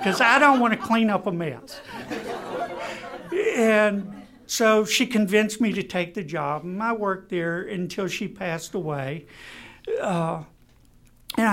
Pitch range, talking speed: 155-200 Hz, 145 wpm